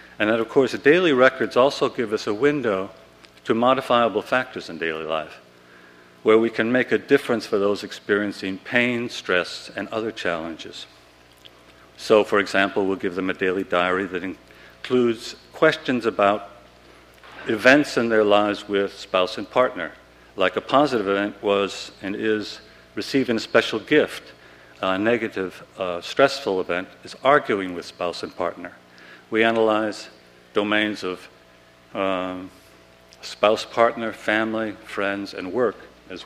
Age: 50-69